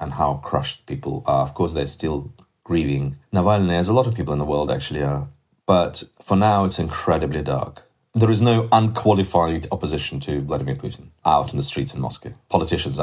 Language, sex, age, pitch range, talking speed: English, male, 30-49, 80-95 Hz, 195 wpm